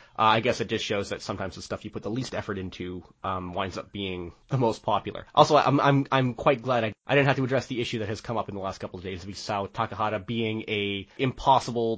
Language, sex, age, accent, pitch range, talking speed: English, male, 20-39, American, 105-135 Hz, 265 wpm